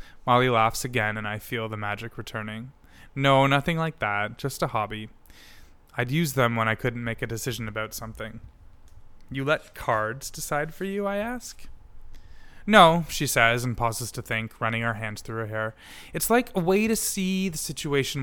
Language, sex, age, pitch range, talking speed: English, male, 20-39, 110-140 Hz, 185 wpm